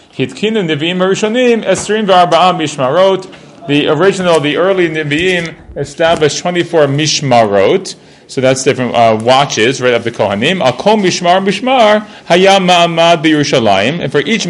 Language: English